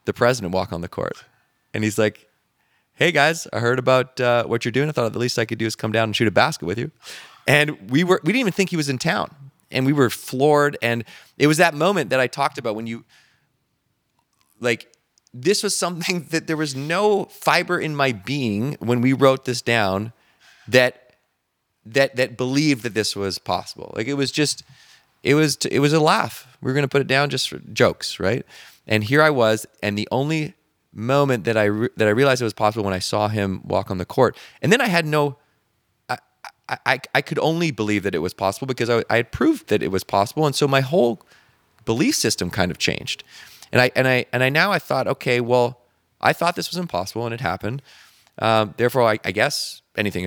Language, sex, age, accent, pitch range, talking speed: English, male, 20-39, American, 110-145 Hz, 225 wpm